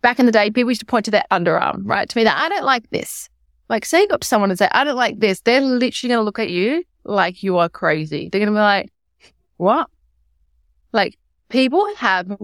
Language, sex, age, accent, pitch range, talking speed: English, female, 20-39, Australian, 185-240 Hz, 255 wpm